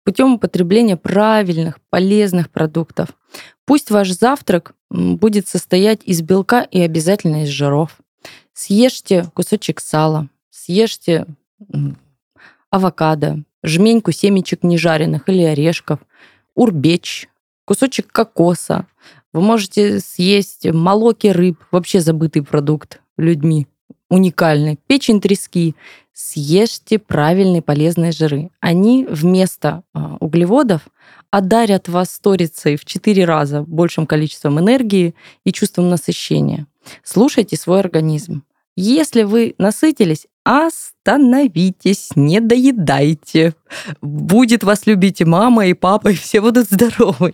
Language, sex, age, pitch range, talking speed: Russian, female, 20-39, 160-210 Hz, 100 wpm